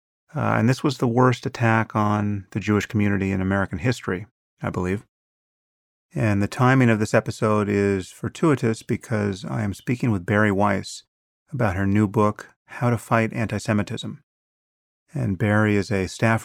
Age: 30-49